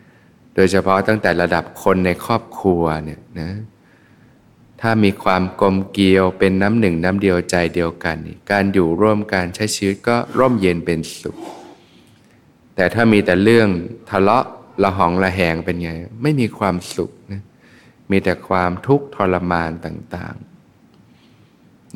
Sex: male